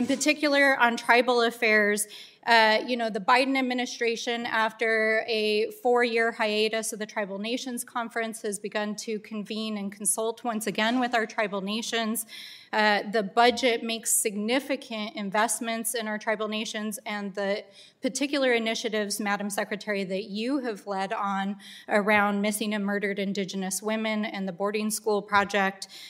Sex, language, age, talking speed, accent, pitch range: female, English, 30-49, 145 wpm, American, 205-235 Hz